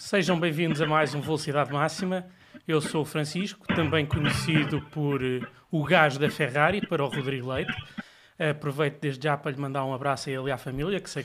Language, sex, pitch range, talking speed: Portuguese, male, 150-185 Hz, 195 wpm